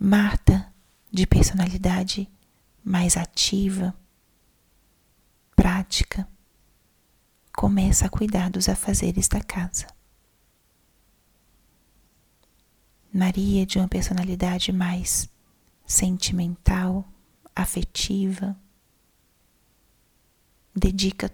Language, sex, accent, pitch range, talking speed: Portuguese, female, Brazilian, 180-205 Hz, 60 wpm